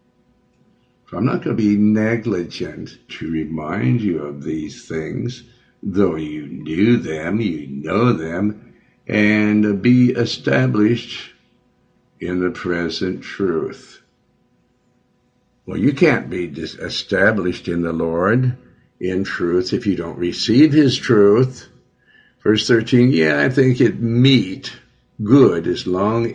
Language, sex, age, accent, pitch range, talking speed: English, male, 60-79, American, 85-115 Hz, 120 wpm